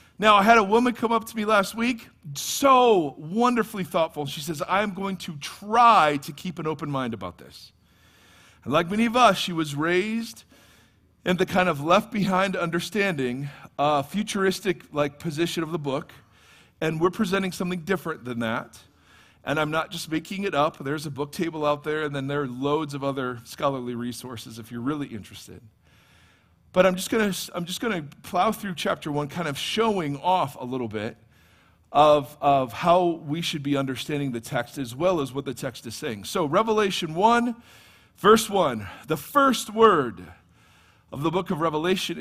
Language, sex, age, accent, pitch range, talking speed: English, male, 40-59, American, 125-190 Hz, 180 wpm